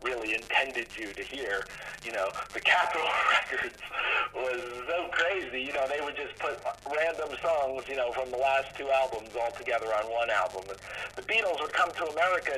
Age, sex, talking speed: 40-59, male, 190 wpm